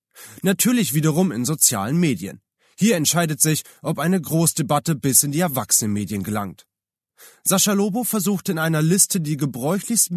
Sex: male